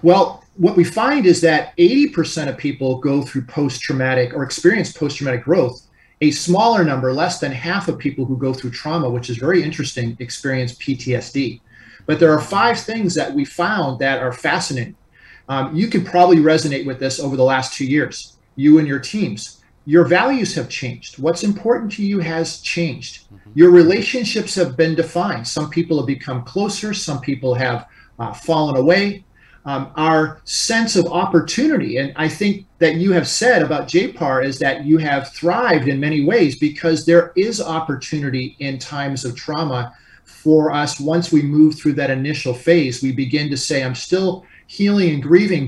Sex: male